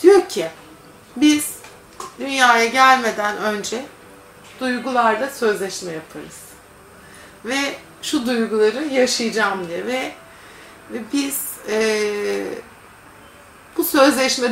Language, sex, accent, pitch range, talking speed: Turkish, female, native, 215-275 Hz, 85 wpm